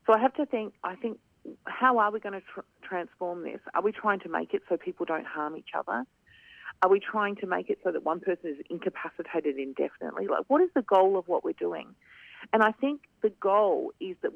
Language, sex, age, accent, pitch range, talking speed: English, female, 40-59, Australian, 175-230 Hz, 235 wpm